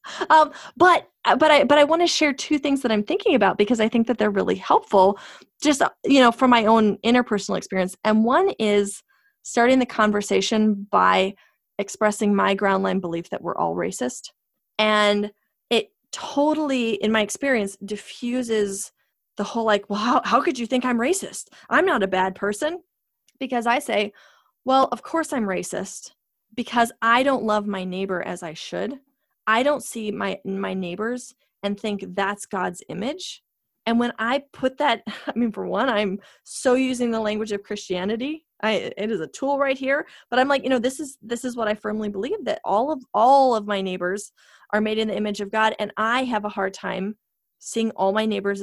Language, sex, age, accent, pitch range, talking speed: English, female, 20-39, American, 205-260 Hz, 195 wpm